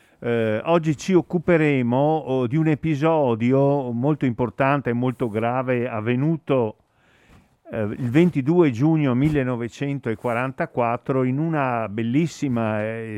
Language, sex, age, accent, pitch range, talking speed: Italian, male, 50-69, native, 120-150 Hz, 100 wpm